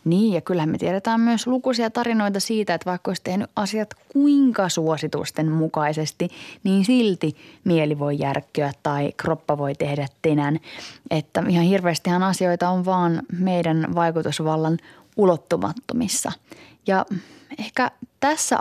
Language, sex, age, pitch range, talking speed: Finnish, female, 20-39, 155-190 Hz, 125 wpm